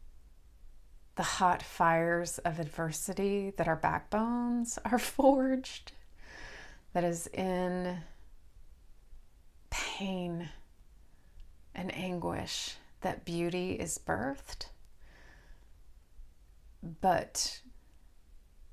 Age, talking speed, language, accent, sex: 30-49, 65 wpm, English, American, female